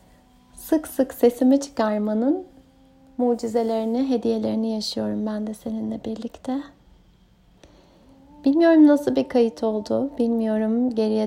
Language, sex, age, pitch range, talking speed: Turkish, female, 30-49, 215-255 Hz, 95 wpm